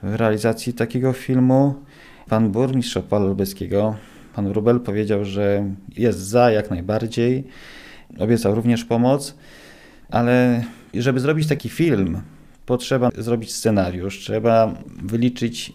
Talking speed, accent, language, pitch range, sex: 110 wpm, native, Polish, 105-120 Hz, male